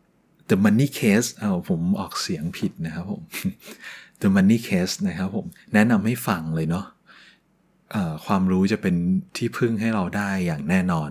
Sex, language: male, Thai